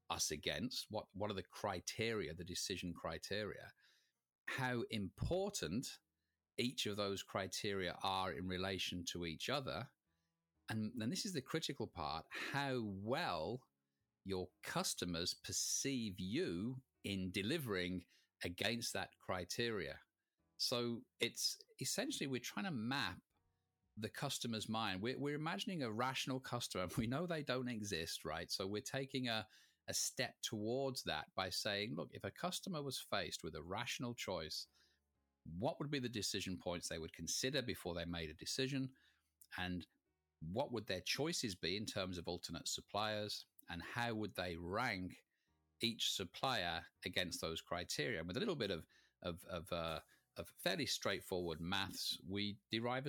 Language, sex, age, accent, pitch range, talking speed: English, male, 40-59, British, 90-125 Hz, 150 wpm